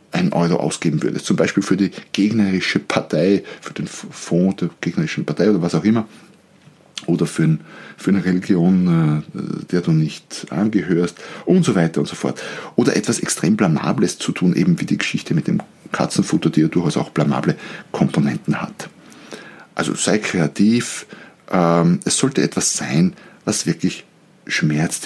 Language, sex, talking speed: German, male, 155 wpm